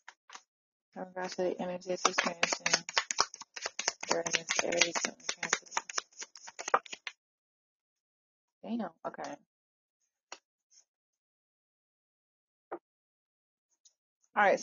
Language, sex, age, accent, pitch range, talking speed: English, female, 20-39, American, 185-230 Hz, 40 wpm